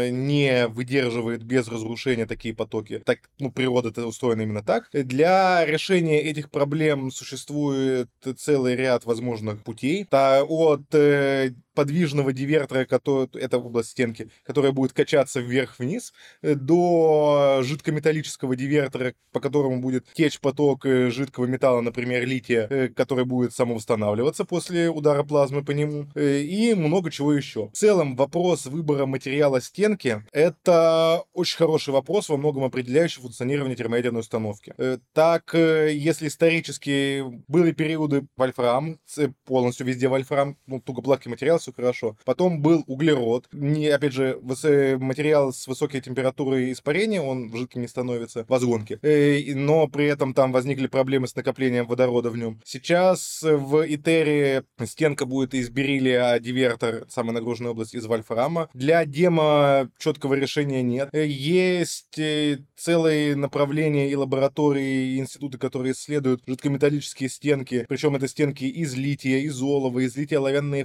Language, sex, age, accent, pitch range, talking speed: Russian, male, 20-39, native, 125-150 Hz, 130 wpm